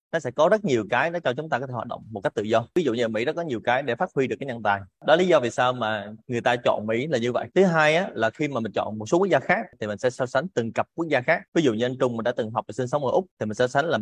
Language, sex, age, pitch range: Vietnamese, male, 20-39, 115-145 Hz